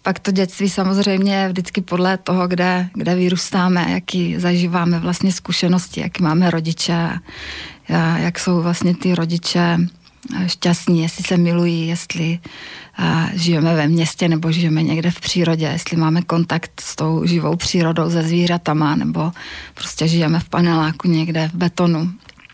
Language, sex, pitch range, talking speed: Slovak, female, 170-185 Hz, 140 wpm